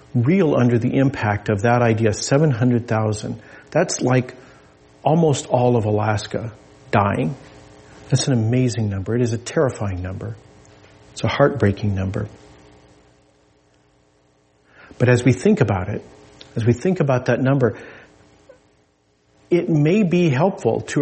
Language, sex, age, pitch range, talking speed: English, male, 50-69, 105-135 Hz, 130 wpm